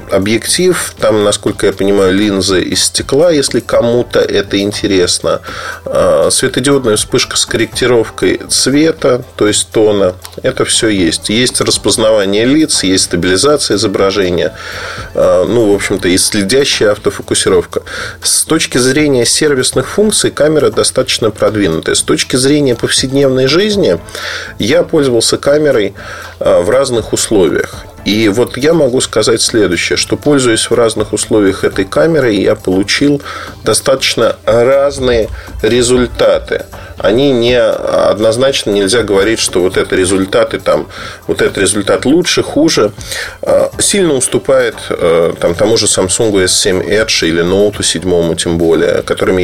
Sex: male